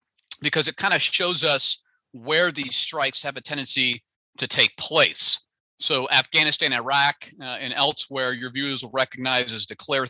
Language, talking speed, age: English, 160 wpm, 40-59